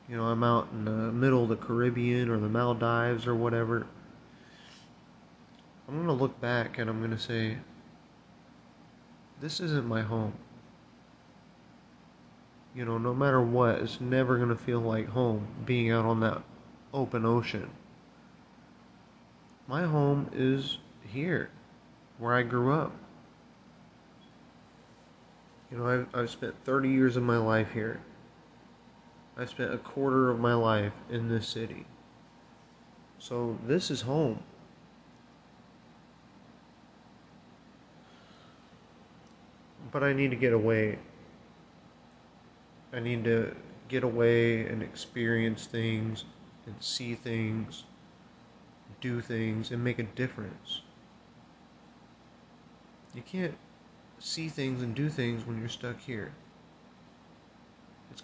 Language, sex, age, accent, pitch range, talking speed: English, male, 30-49, American, 115-130 Hz, 120 wpm